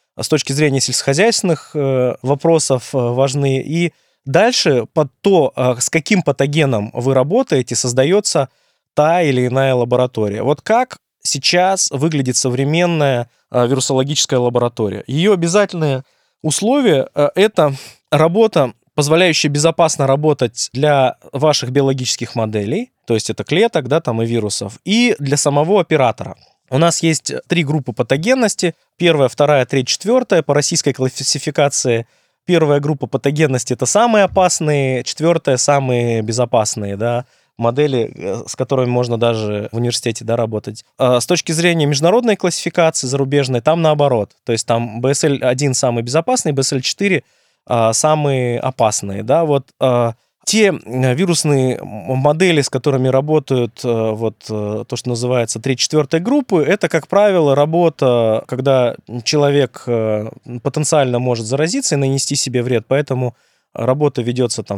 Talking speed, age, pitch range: 120 wpm, 20-39, 125-160 Hz